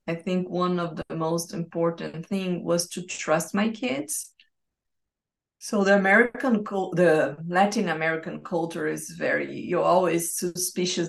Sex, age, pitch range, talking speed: female, 20-39, 165-190 Hz, 130 wpm